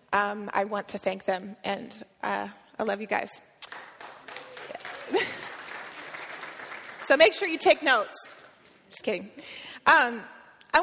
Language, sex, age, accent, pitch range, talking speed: Ukrainian, female, 20-39, American, 225-265 Hz, 125 wpm